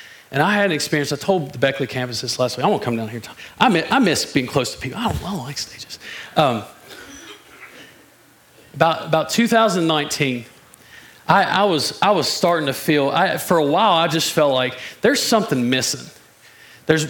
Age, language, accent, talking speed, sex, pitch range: 40-59, English, American, 200 wpm, male, 140-200 Hz